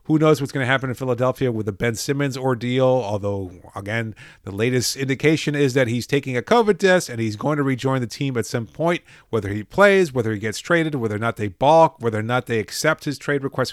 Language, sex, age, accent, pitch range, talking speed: English, male, 40-59, American, 115-145 Hz, 240 wpm